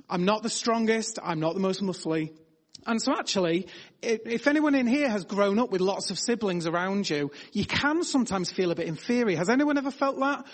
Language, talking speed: English, 210 wpm